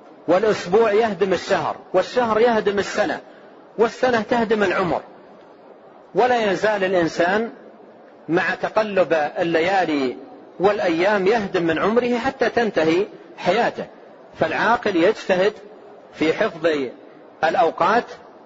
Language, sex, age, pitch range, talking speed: Arabic, male, 40-59, 155-200 Hz, 90 wpm